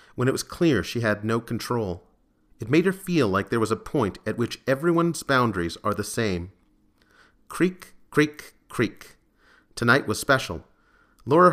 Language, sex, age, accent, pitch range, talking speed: English, male, 40-59, American, 105-150 Hz, 160 wpm